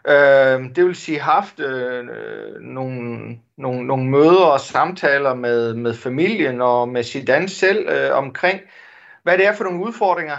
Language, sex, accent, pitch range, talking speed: Danish, male, native, 135-185 Hz, 175 wpm